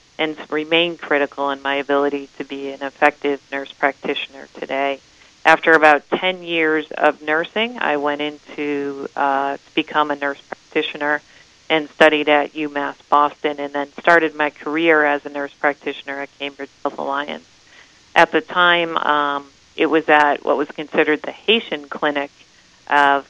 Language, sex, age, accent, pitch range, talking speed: English, female, 40-59, American, 145-155 Hz, 155 wpm